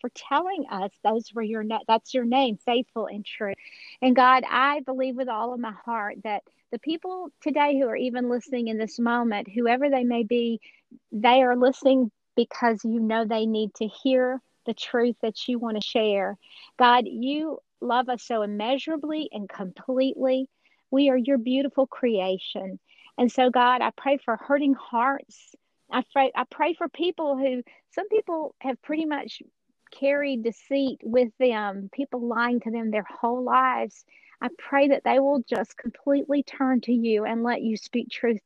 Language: English